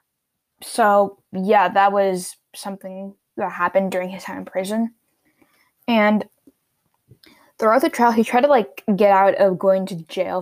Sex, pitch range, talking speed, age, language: female, 190-210 Hz, 150 wpm, 10-29, English